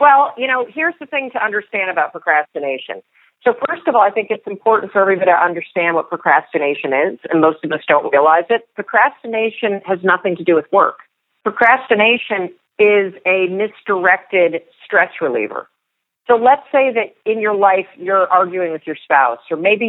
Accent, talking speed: American, 180 wpm